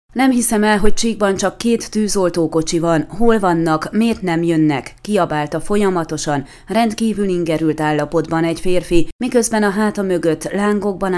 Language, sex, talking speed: Hungarian, female, 140 wpm